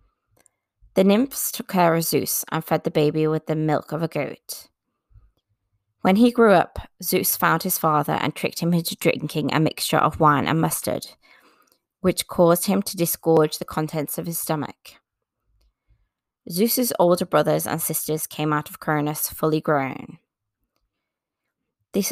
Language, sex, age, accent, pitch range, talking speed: English, female, 20-39, British, 150-175 Hz, 155 wpm